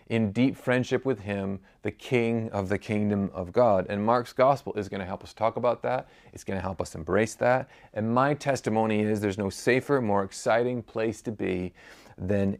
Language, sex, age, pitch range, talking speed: English, male, 30-49, 100-125 Hz, 205 wpm